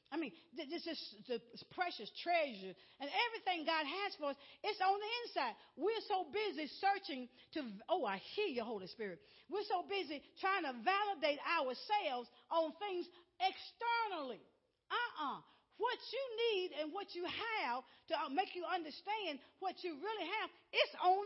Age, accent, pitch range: 50-69, American, 280-400 Hz